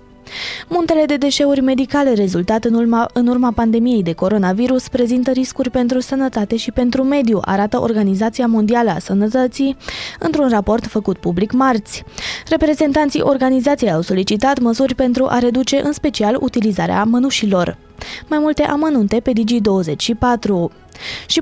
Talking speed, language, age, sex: 125 wpm, Romanian, 20-39, female